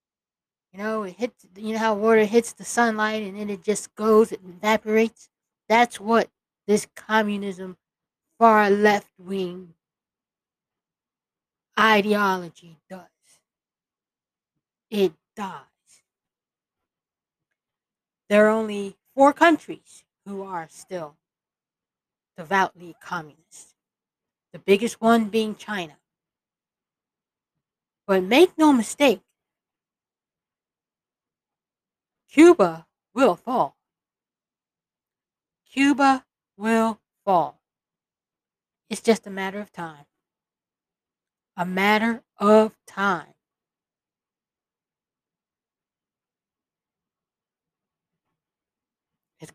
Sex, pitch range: female, 185-225 Hz